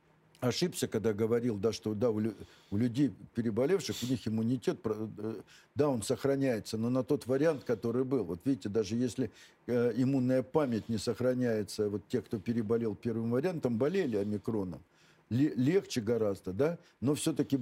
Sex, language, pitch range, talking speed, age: male, Russian, 100-125 Hz, 145 wpm, 60-79